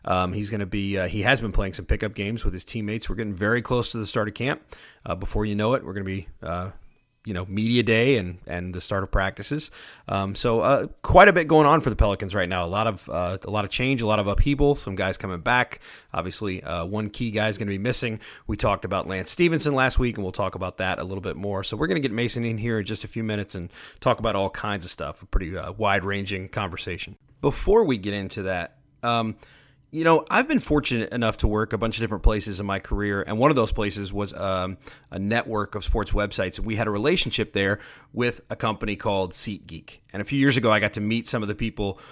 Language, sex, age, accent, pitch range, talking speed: English, male, 30-49, American, 100-120 Hz, 260 wpm